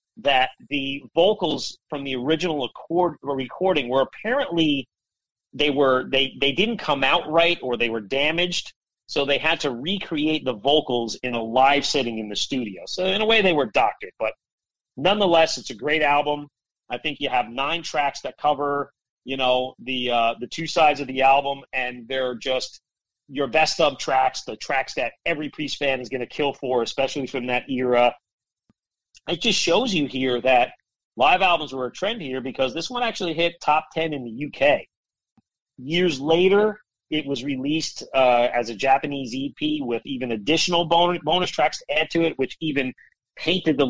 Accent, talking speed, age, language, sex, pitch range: American, 185 wpm, 40-59, English, male, 130-170 Hz